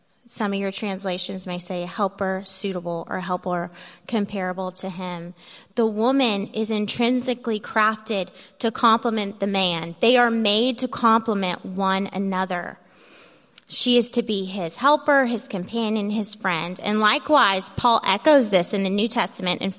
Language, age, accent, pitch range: English, 20-39, American, 190-235 Hz